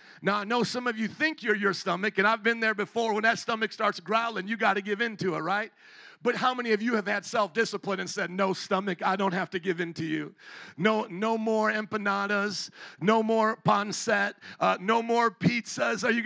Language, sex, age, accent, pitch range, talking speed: English, male, 50-69, American, 200-245 Hz, 230 wpm